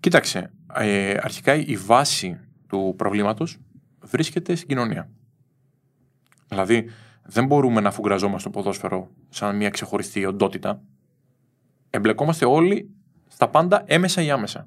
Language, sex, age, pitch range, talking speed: Greek, male, 20-39, 115-155 Hz, 115 wpm